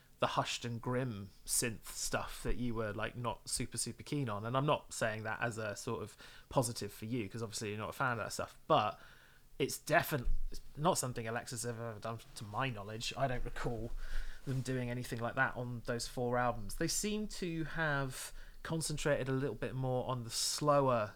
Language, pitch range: English, 115-135 Hz